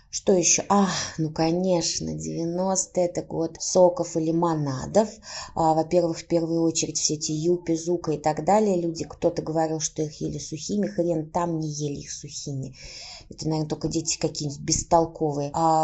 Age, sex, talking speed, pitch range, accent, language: 20-39, female, 165 wpm, 160-195 Hz, native, Russian